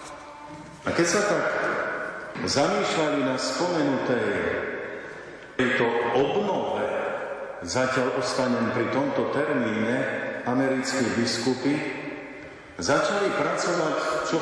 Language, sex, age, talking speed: Slovak, male, 50-69, 80 wpm